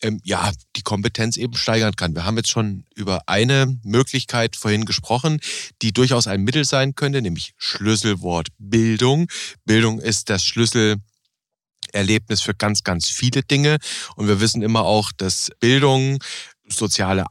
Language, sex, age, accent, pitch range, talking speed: German, male, 40-59, German, 110-140 Hz, 140 wpm